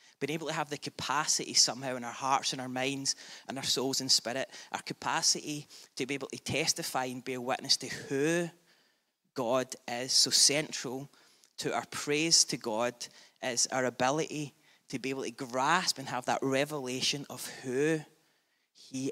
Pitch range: 125-150 Hz